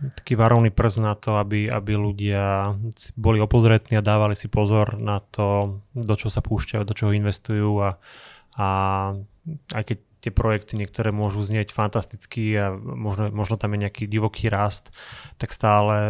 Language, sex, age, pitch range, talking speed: Slovak, male, 20-39, 105-120 Hz, 160 wpm